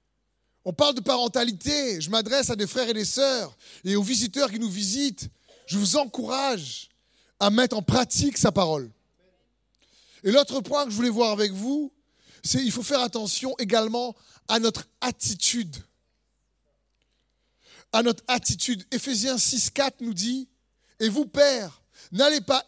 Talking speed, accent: 150 wpm, French